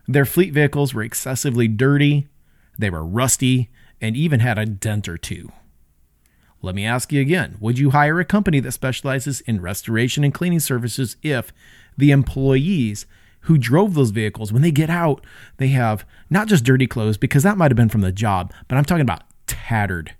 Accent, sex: American, male